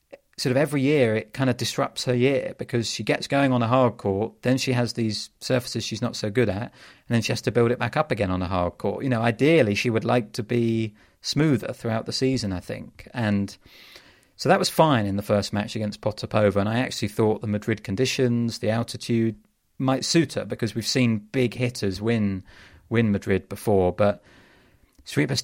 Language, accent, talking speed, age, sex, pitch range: English, British, 210 wpm, 30-49, male, 105-125 Hz